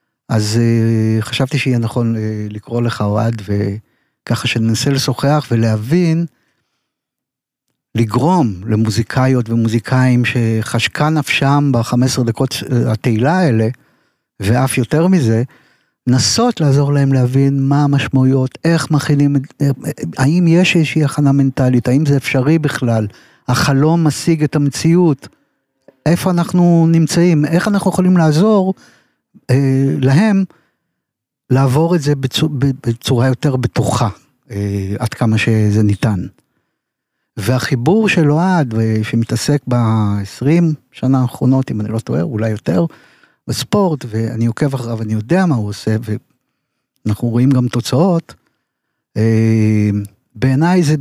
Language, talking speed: Hebrew, 105 wpm